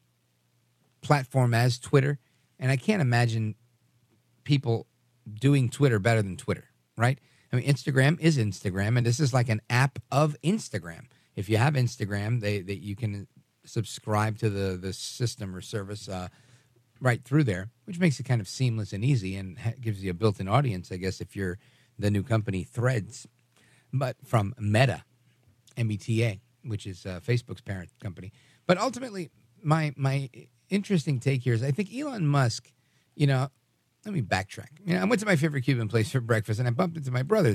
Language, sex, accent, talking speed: English, male, American, 180 wpm